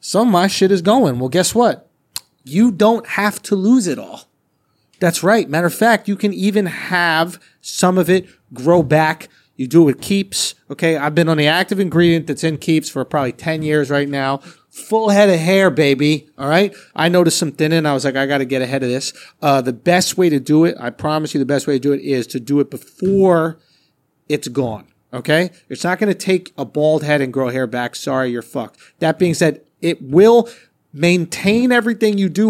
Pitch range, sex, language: 135-180 Hz, male, English